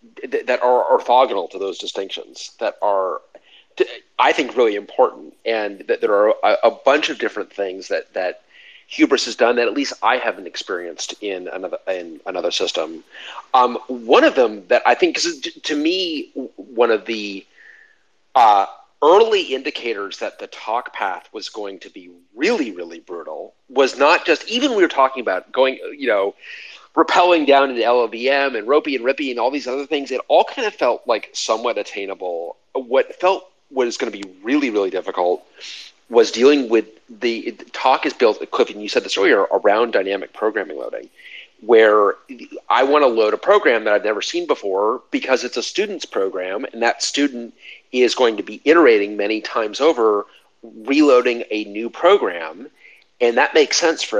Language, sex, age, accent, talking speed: English, male, 40-59, American, 175 wpm